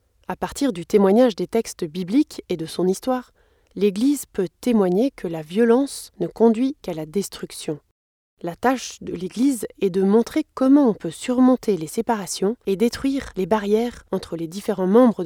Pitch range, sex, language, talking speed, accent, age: 180-235 Hz, female, French, 170 wpm, French, 20-39